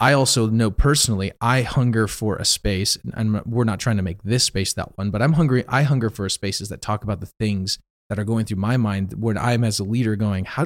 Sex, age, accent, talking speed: male, 30-49, American, 250 wpm